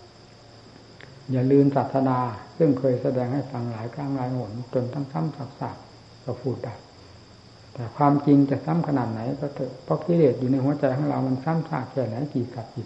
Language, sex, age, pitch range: Thai, male, 60-79, 115-135 Hz